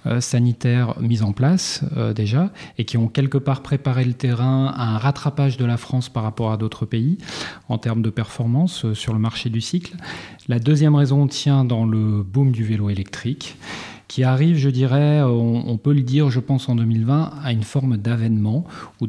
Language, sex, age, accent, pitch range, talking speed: French, male, 40-59, French, 110-140 Hz, 200 wpm